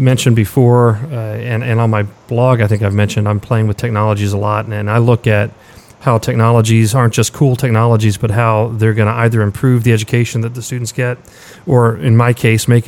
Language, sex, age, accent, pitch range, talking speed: English, male, 40-59, American, 110-125 Hz, 220 wpm